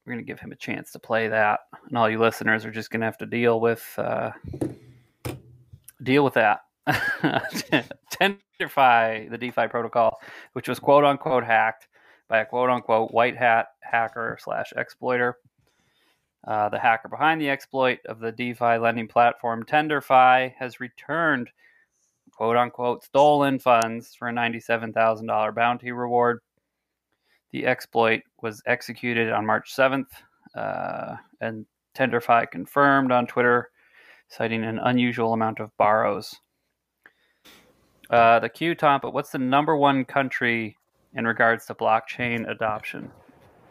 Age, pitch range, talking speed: 20-39, 115-130 Hz, 135 wpm